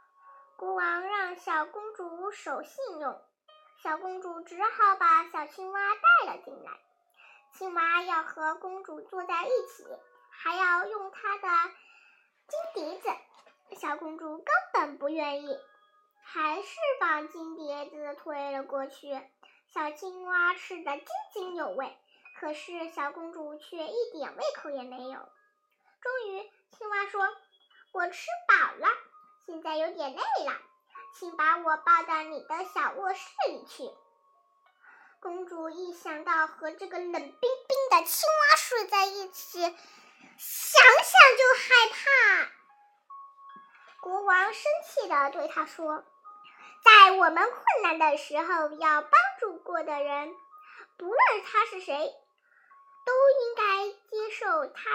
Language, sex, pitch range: Chinese, male, 310-400 Hz